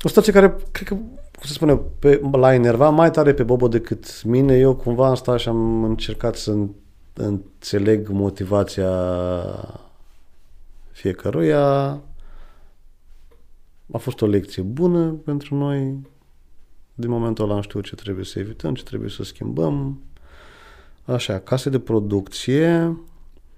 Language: Romanian